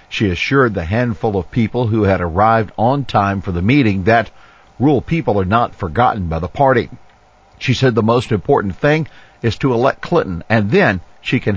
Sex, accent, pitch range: male, American, 95-125 Hz